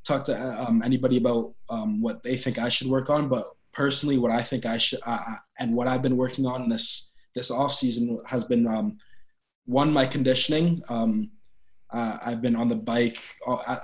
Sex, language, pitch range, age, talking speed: male, English, 115-130 Hz, 20-39, 195 wpm